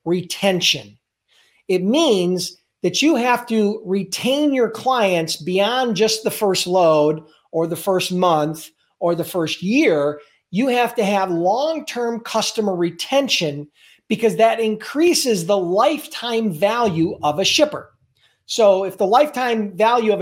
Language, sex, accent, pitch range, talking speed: English, male, American, 175-235 Hz, 135 wpm